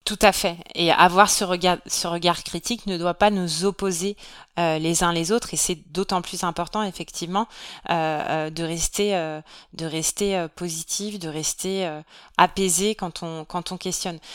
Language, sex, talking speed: French, female, 180 wpm